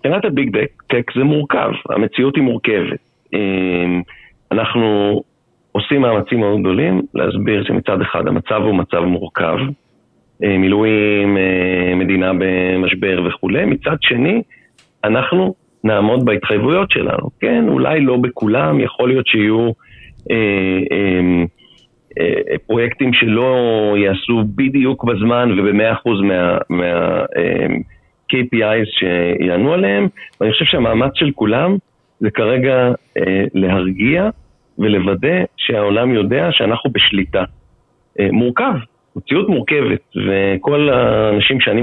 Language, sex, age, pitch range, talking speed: Hebrew, male, 40-59, 95-125 Hz, 100 wpm